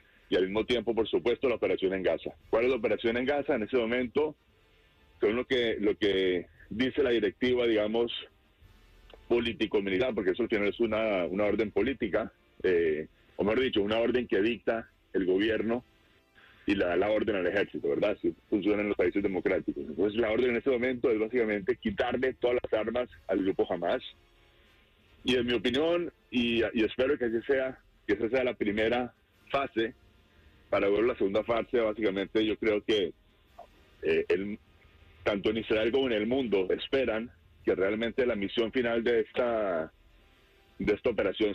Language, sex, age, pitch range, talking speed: Spanish, male, 40-59, 105-135 Hz, 175 wpm